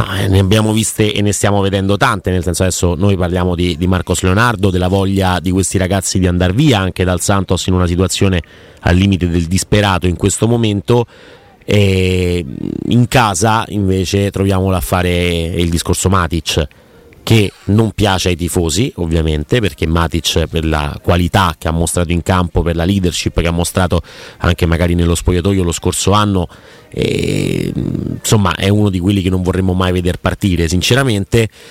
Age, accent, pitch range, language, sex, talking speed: 30-49, native, 90-110 Hz, Italian, male, 170 wpm